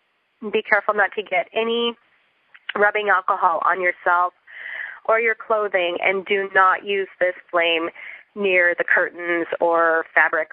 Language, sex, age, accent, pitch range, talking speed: English, female, 30-49, American, 185-230 Hz, 135 wpm